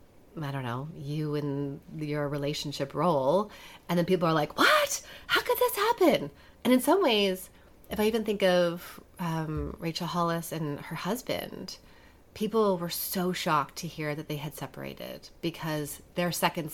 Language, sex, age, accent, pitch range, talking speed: English, female, 30-49, American, 145-185 Hz, 165 wpm